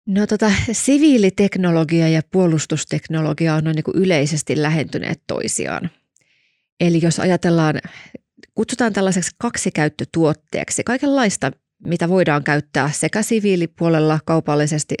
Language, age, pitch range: Finnish, 30-49, 155-195 Hz